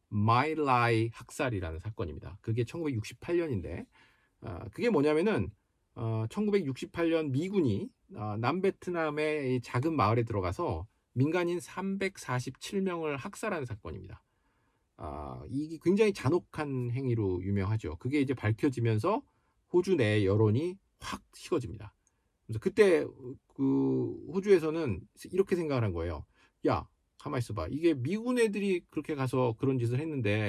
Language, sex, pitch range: Korean, male, 105-170 Hz